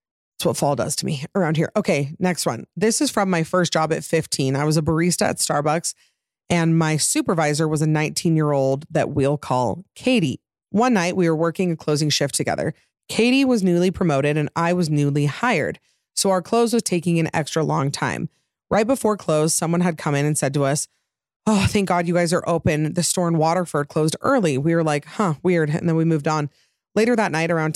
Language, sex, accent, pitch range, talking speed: English, female, American, 145-175 Hz, 220 wpm